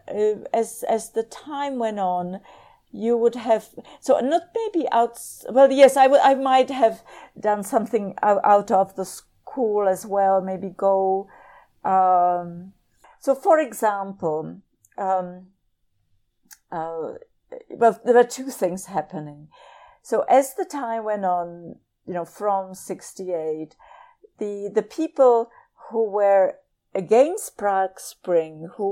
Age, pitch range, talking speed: 50-69, 180-235 Hz, 130 wpm